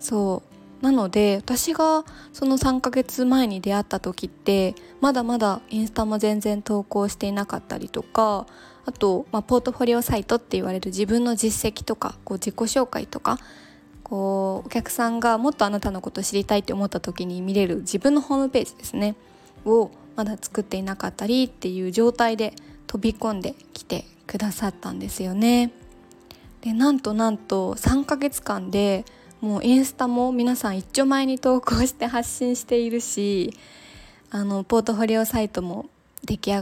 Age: 20-39